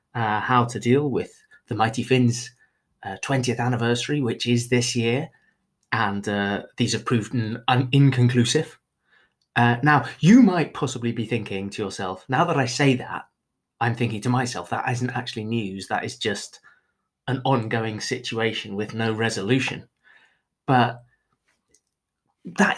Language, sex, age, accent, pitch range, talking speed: English, male, 30-49, British, 110-145 Hz, 145 wpm